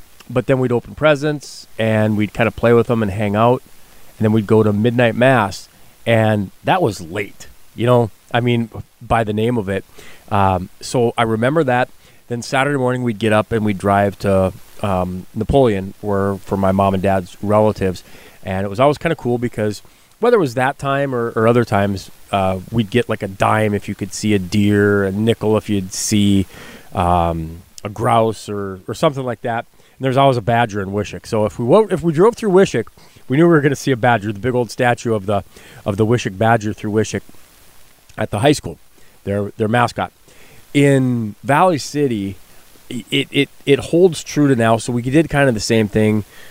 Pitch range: 105-125 Hz